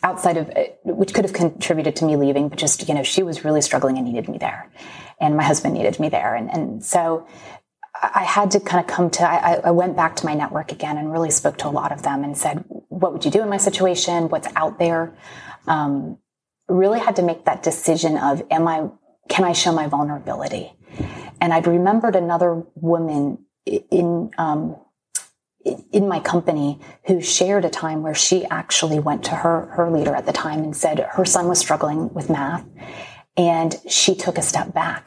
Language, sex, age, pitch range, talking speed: English, female, 30-49, 155-180 Hz, 205 wpm